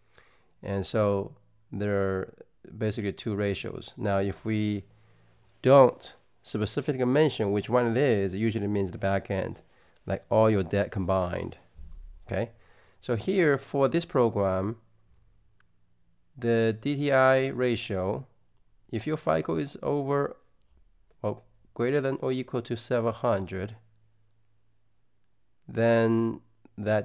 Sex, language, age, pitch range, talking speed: male, English, 30-49, 100-120 Hz, 115 wpm